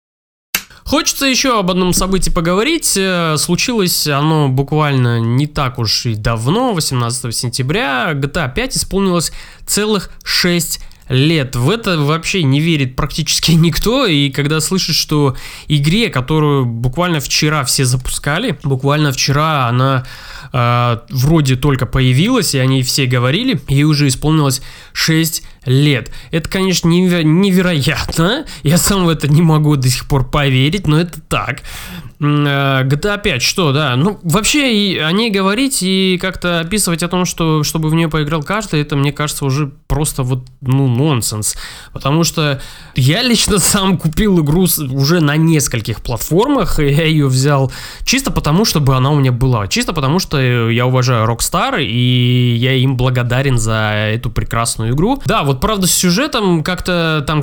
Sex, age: male, 20-39